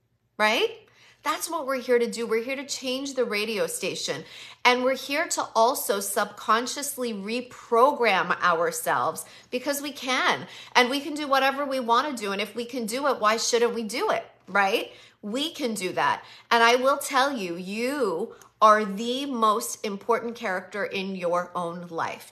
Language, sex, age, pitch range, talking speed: English, female, 30-49, 200-250 Hz, 175 wpm